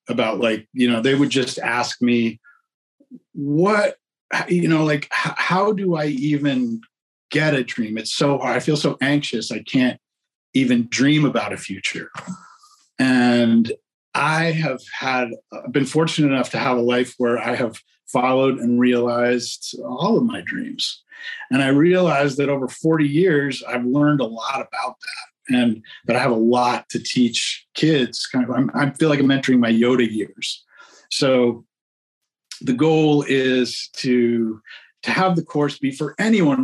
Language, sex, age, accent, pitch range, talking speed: English, male, 50-69, American, 120-150 Hz, 165 wpm